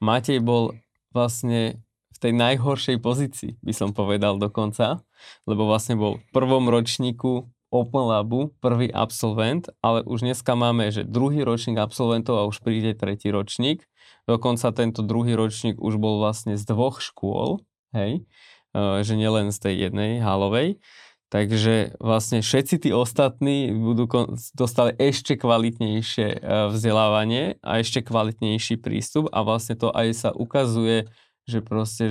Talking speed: 135 wpm